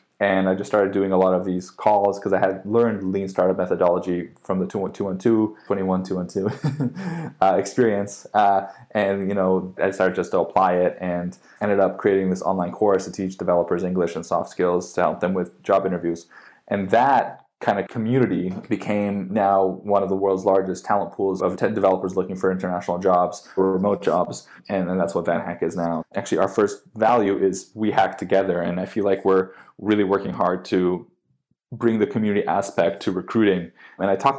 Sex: male